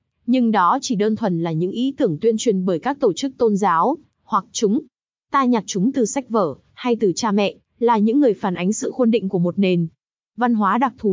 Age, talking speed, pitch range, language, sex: 20-39, 235 wpm, 205-255 Hz, Vietnamese, female